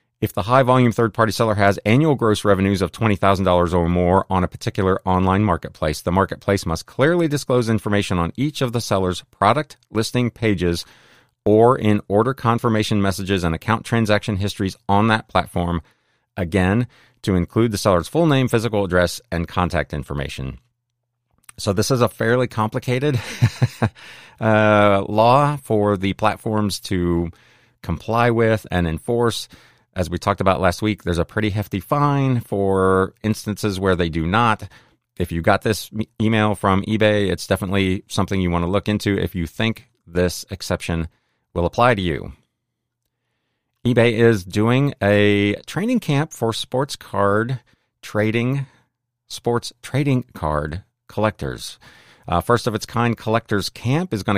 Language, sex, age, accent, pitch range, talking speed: English, male, 40-59, American, 95-120 Hz, 150 wpm